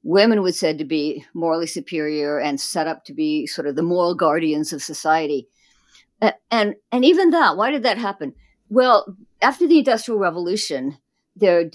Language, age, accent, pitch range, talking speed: English, 50-69, American, 160-225 Hz, 175 wpm